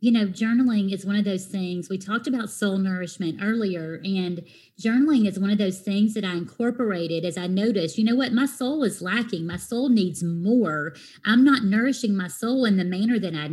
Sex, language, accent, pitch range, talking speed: female, English, American, 190-240 Hz, 215 wpm